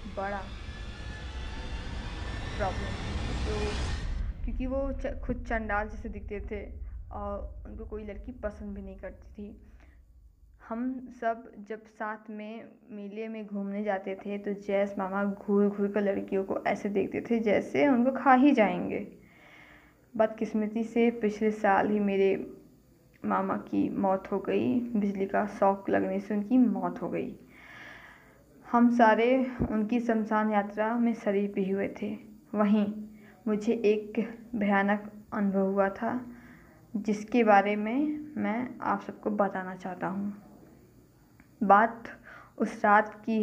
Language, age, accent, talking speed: Hindi, 20-39, native, 130 wpm